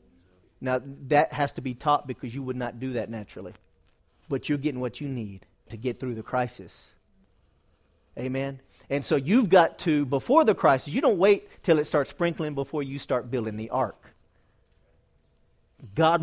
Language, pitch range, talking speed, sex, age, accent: English, 125-170 Hz, 175 wpm, male, 40-59, American